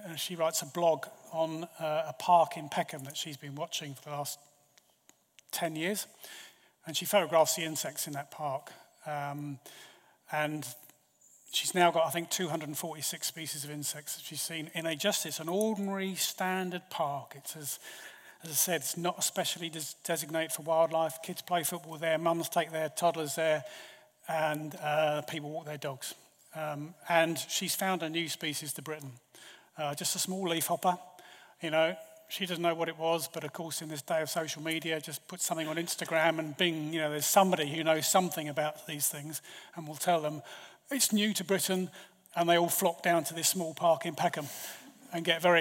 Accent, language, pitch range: British, English, 155-180 Hz